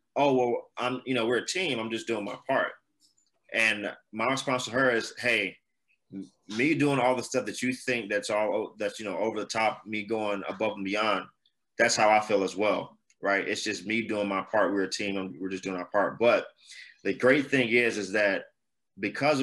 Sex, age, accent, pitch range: male, 20-39, American, 100-125 Hz